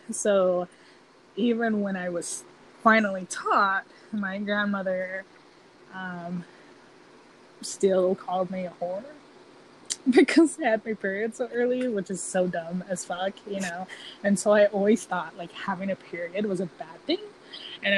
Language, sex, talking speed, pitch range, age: English, female, 145 wpm, 185-225 Hz, 20-39